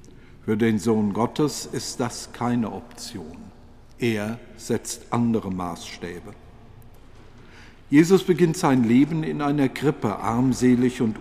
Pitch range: 105-130 Hz